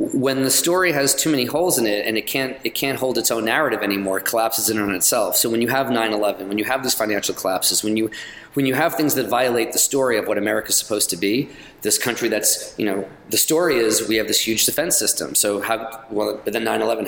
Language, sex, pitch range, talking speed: English, male, 115-135 Hz, 260 wpm